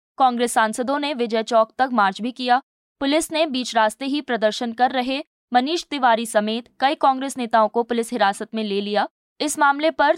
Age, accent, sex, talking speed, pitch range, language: 20-39, native, female, 190 wpm, 215-270 Hz, Hindi